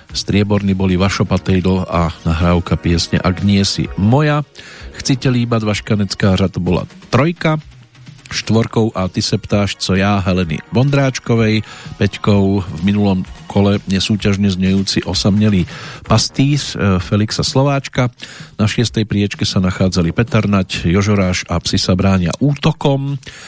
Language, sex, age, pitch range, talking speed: Slovak, male, 40-59, 95-120 Hz, 115 wpm